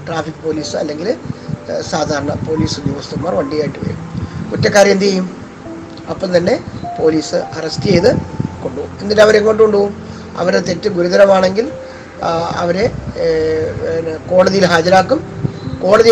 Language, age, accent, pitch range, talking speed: Malayalam, 20-39, native, 160-205 Hz, 100 wpm